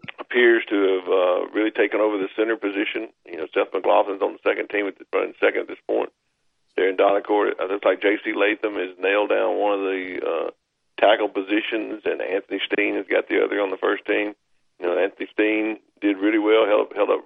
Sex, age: male, 50-69